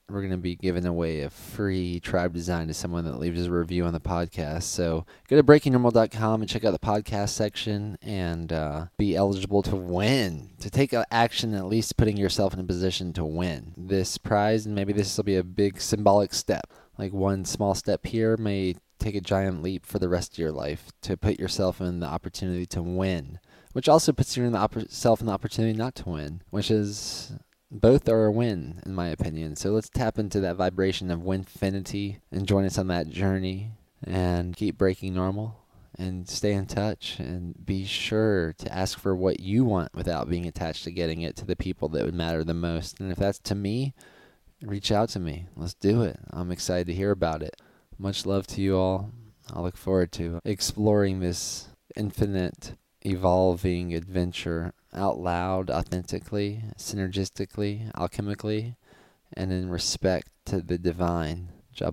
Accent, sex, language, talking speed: American, male, English, 185 wpm